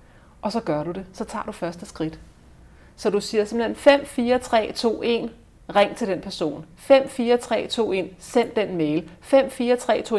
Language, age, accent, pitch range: Danish, 30-49, native, 185-235 Hz